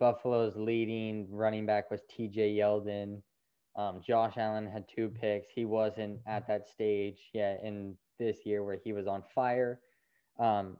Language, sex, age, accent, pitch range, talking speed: English, male, 20-39, American, 105-115 Hz, 155 wpm